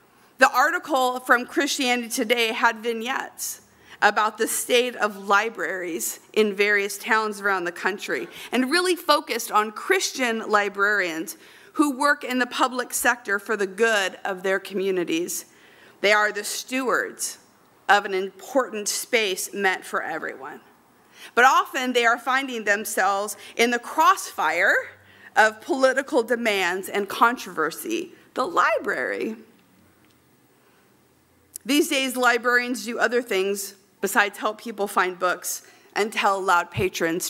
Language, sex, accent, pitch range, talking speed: English, female, American, 195-255 Hz, 125 wpm